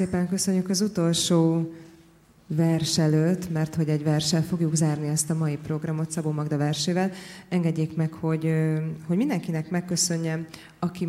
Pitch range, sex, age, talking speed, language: 160-175 Hz, female, 20-39, 135 wpm, Hungarian